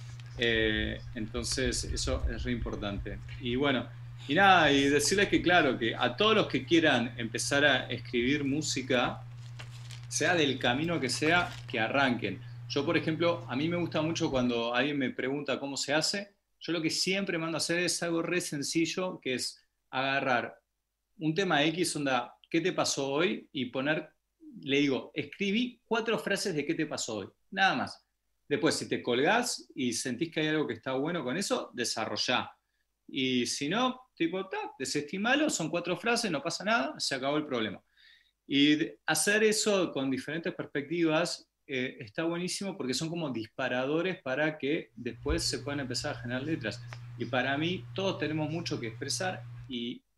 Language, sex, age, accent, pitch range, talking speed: English, male, 30-49, Argentinian, 125-165 Hz, 170 wpm